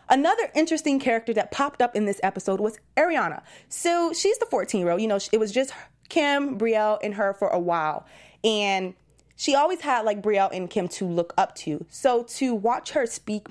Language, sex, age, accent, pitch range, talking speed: English, female, 20-39, American, 200-295 Hz, 195 wpm